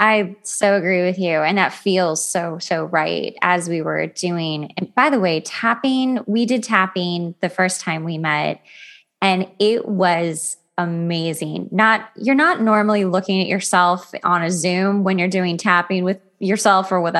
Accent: American